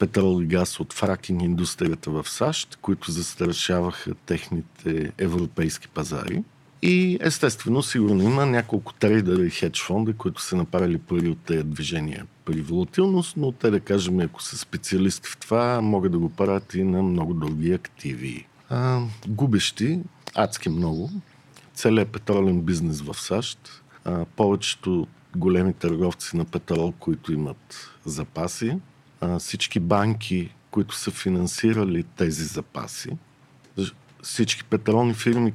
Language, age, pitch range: English, 50-69, 85-115 Hz